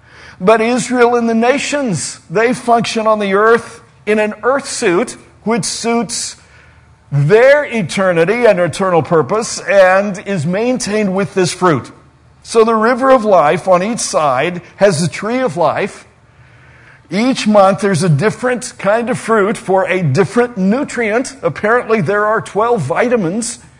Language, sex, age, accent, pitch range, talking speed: English, male, 50-69, American, 170-225 Hz, 145 wpm